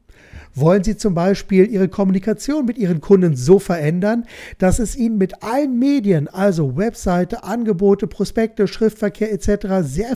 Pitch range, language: 165-220 Hz, German